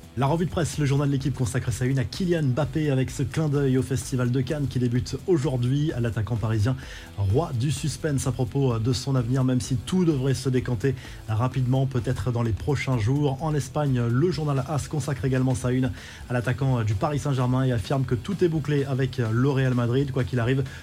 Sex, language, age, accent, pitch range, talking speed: male, French, 20-39, French, 125-145 Hz, 215 wpm